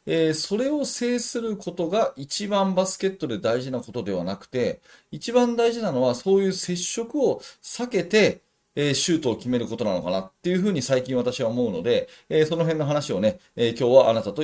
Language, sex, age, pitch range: Japanese, male, 30-49, 110-175 Hz